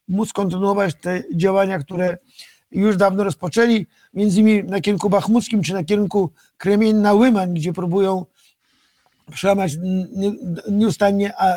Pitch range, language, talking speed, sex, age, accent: 195-225 Hz, Polish, 110 wpm, male, 50-69, native